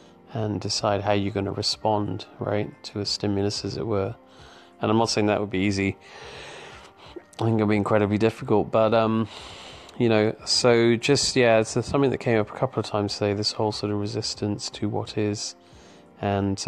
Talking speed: 200 wpm